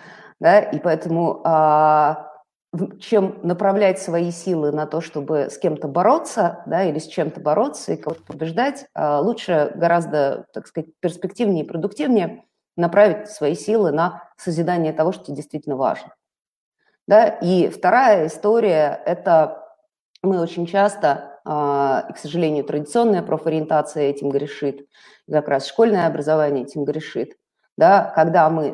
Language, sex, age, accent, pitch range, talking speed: Russian, female, 30-49, native, 150-200 Hz, 125 wpm